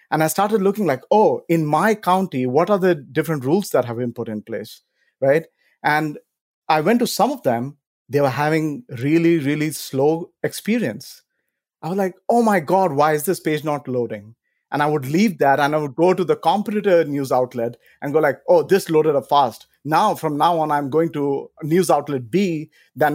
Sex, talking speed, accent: male, 205 wpm, Indian